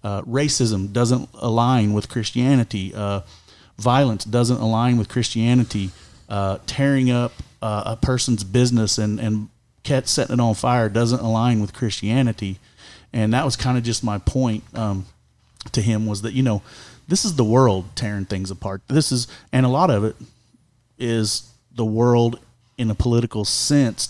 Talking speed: 160 wpm